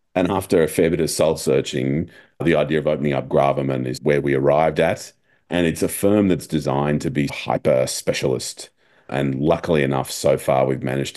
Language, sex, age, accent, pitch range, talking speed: English, male, 40-59, Australian, 70-80 Hz, 195 wpm